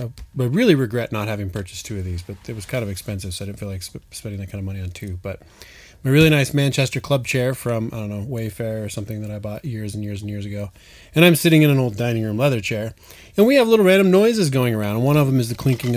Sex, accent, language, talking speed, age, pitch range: male, American, English, 285 wpm, 20-39, 100-135 Hz